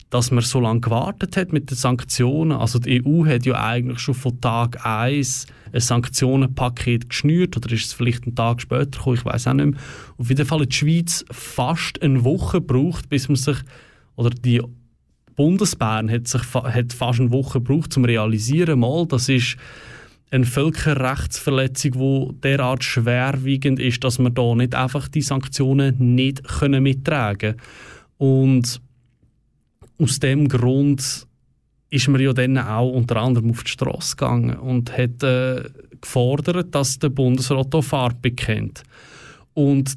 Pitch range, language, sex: 120-140 Hz, German, male